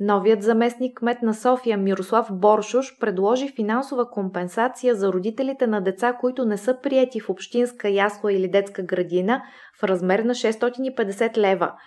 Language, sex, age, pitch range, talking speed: Bulgarian, female, 20-39, 195-250 Hz, 145 wpm